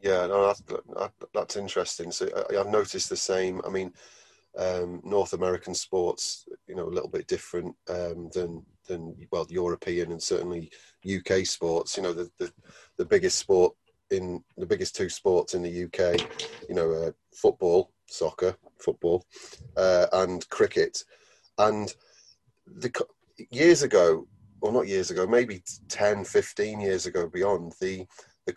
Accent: British